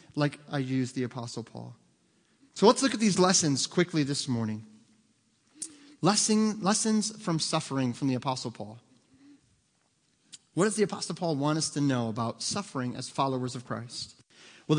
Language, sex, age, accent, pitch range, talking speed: English, male, 30-49, American, 130-170 Hz, 155 wpm